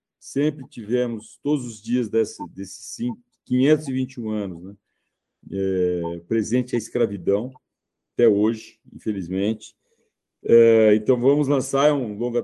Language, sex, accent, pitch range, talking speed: Portuguese, male, Brazilian, 110-140 Hz, 95 wpm